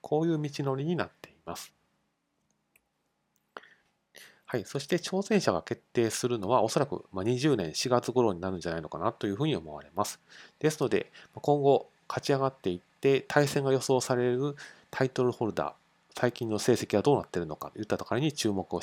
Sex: male